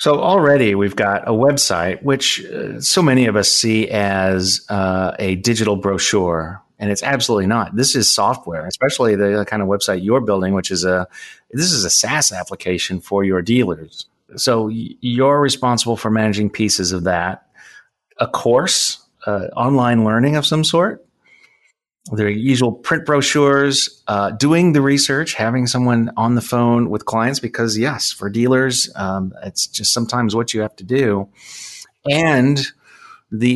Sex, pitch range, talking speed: male, 95-125 Hz, 155 wpm